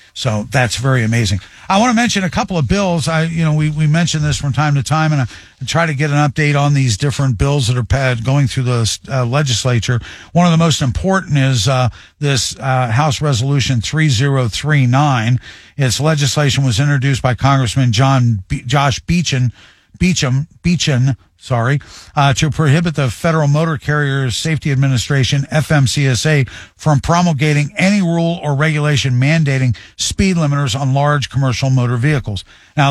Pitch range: 125-150 Hz